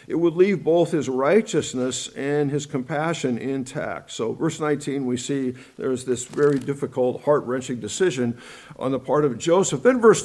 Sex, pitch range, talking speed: male, 145-185 Hz, 165 wpm